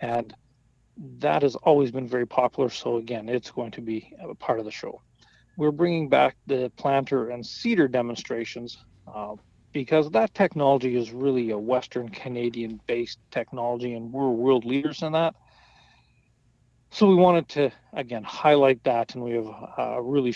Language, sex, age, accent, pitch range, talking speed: English, male, 40-59, American, 115-135 Hz, 160 wpm